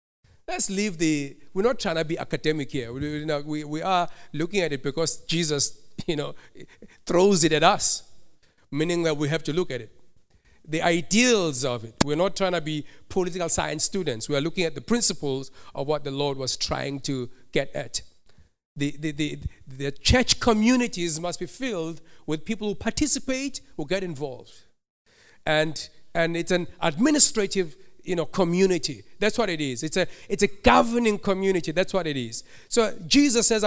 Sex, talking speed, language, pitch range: male, 185 wpm, English, 155-210 Hz